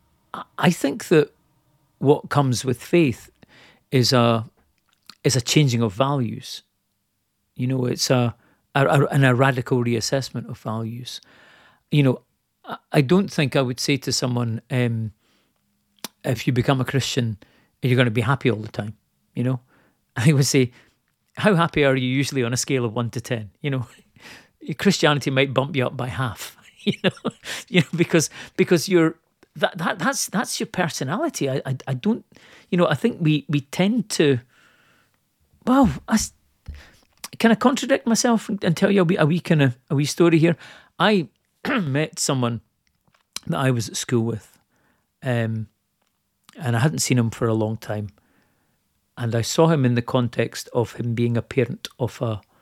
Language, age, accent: English, 40-59, British